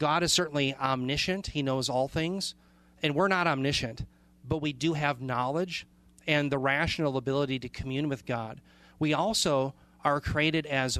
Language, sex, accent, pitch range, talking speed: English, male, American, 130-155 Hz, 165 wpm